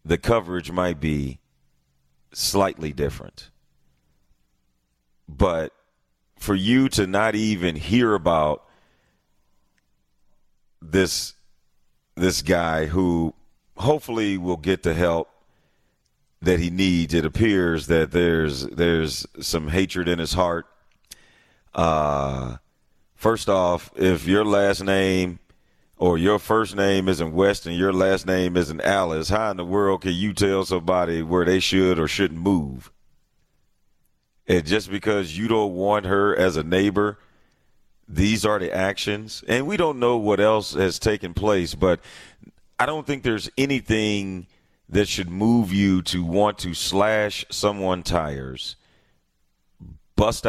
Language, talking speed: English, 130 wpm